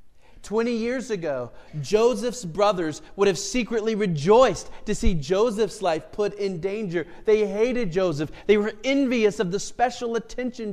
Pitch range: 145-225 Hz